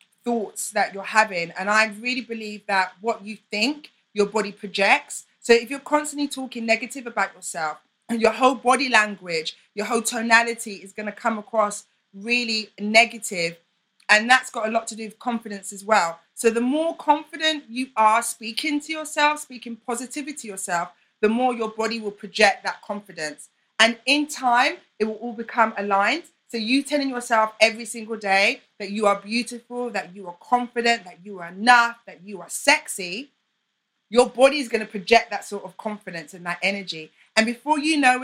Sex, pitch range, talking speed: female, 205-245 Hz, 185 wpm